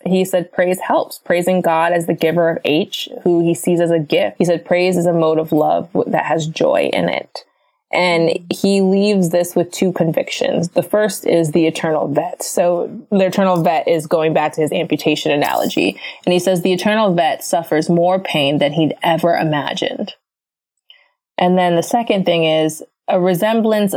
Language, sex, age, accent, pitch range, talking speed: English, female, 20-39, American, 165-195 Hz, 190 wpm